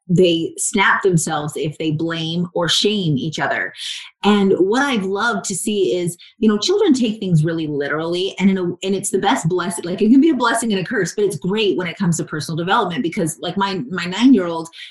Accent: American